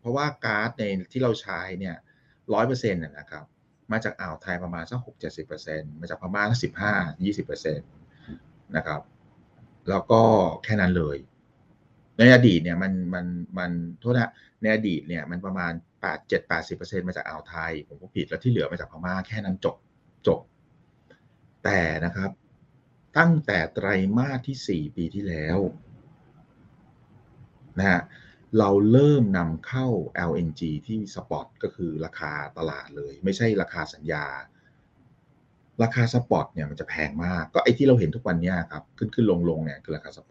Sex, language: male, Thai